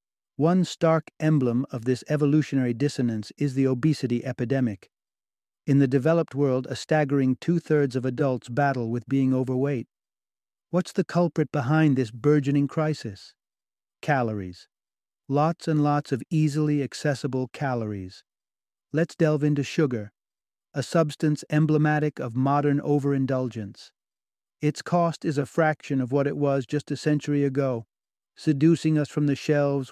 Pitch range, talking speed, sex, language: 130-155 Hz, 135 wpm, male, English